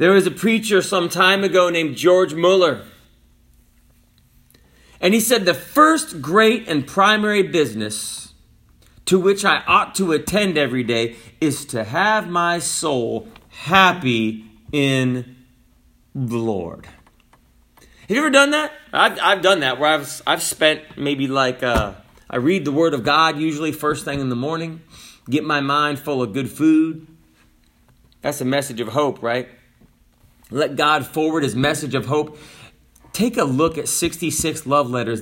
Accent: American